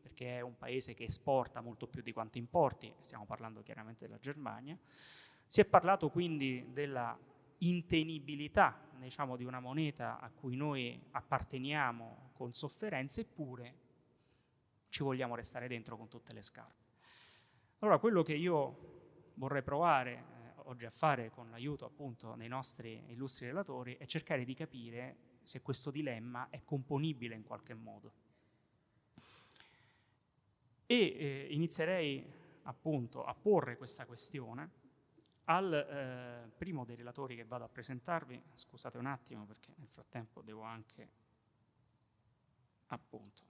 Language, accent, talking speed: Italian, native, 130 wpm